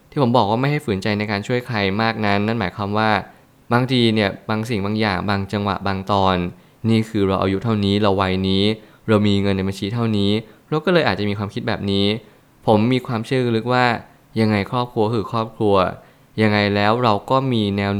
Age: 20-39